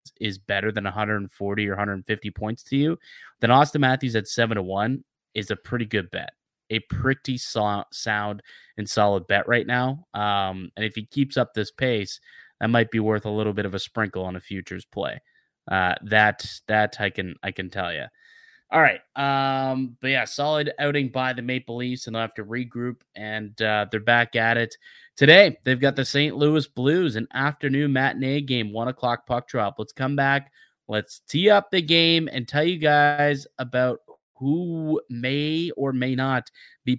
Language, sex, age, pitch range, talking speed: English, male, 20-39, 105-140 Hz, 190 wpm